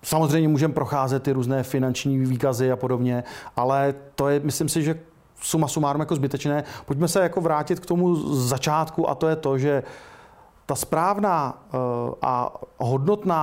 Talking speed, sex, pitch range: 160 wpm, male, 125-155 Hz